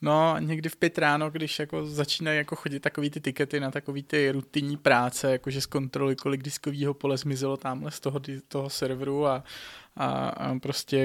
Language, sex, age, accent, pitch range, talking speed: Czech, male, 20-39, native, 130-150 Hz, 185 wpm